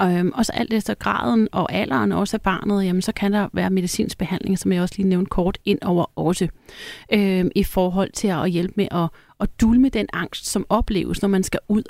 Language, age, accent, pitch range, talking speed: Danish, 30-49, native, 180-205 Hz, 220 wpm